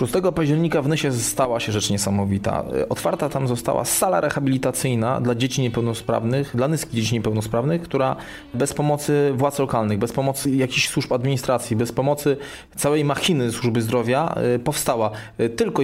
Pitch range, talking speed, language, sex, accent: 115-140 Hz, 145 wpm, Polish, male, native